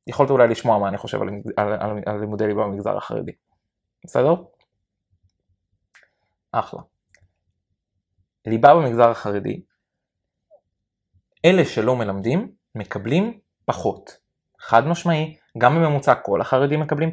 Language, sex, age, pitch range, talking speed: Hebrew, male, 20-39, 105-150 Hz, 110 wpm